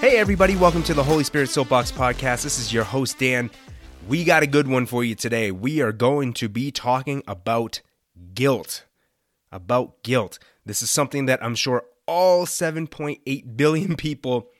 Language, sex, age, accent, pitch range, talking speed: English, male, 30-49, American, 110-145 Hz, 175 wpm